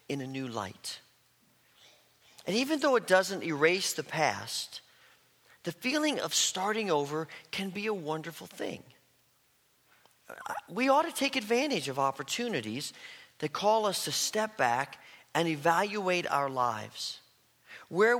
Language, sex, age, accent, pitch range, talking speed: English, male, 40-59, American, 145-215 Hz, 130 wpm